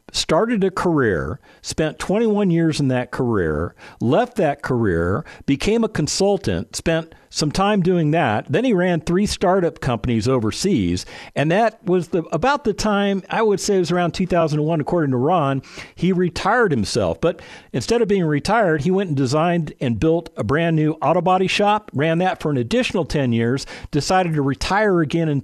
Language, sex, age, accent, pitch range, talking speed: English, male, 50-69, American, 125-180 Hz, 180 wpm